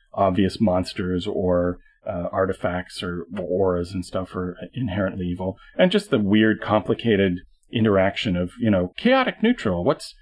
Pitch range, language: 95-125 Hz, English